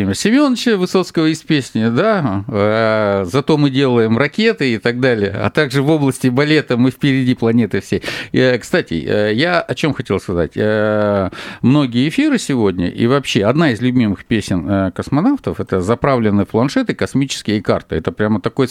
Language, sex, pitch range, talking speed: Russian, male, 105-160 Hz, 145 wpm